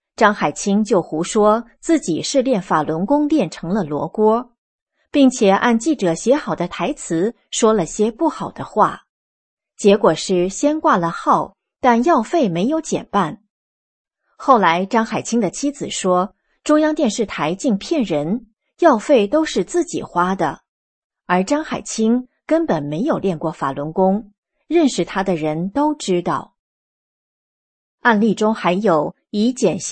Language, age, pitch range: English, 30-49, 180-255 Hz